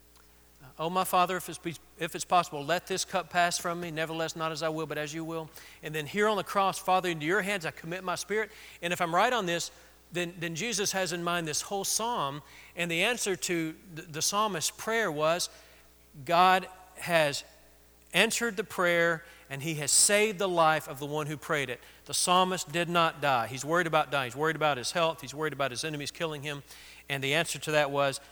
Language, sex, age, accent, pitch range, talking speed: English, male, 40-59, American, 135-175 Hz, 220 wpm